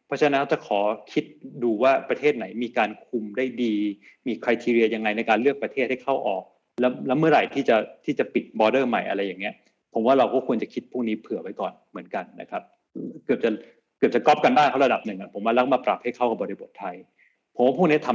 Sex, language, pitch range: male, Thai, 105-130 Hz